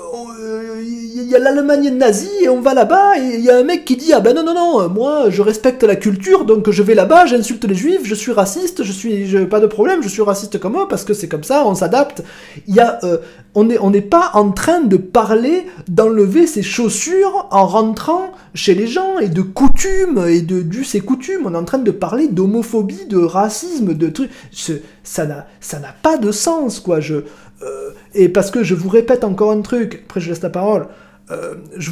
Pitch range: 185-265 Hz